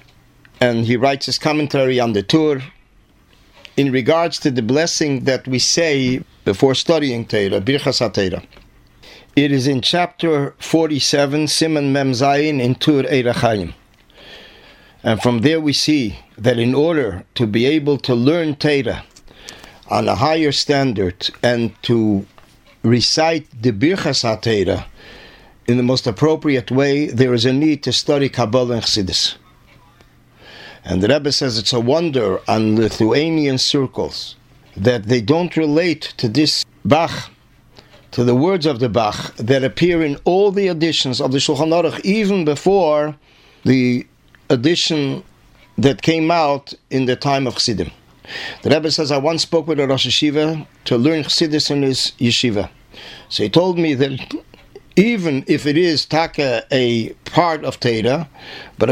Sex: male